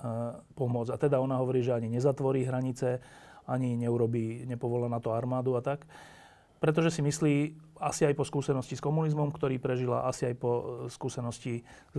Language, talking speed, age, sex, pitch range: Slovak, 160 wpm, 30-49, male, 120-150 Hz